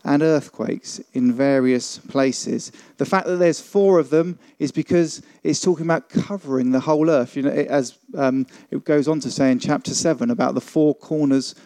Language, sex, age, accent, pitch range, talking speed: English, male, 40-59, British, 140-195 Hz, 195 wpm